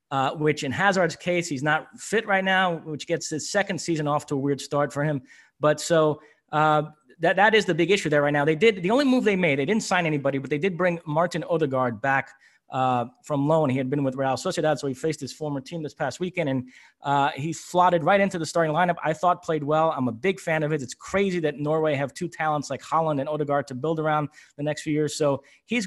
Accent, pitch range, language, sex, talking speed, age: American, 145-185 Hz, English, male, 255 wpm, 30-49